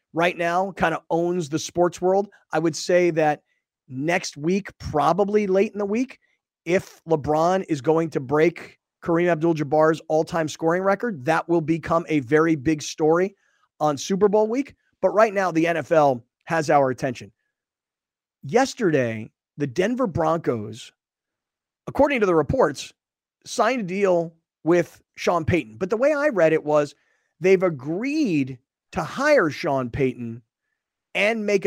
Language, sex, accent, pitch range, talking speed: English, male, American, 155-195 Hz, 150 wpm